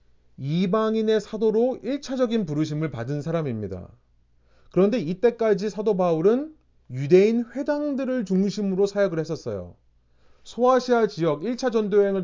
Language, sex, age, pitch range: Korean, male, 30-49, 130-215 Hz